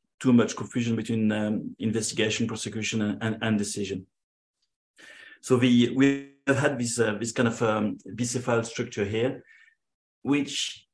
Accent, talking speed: French, 145 wpm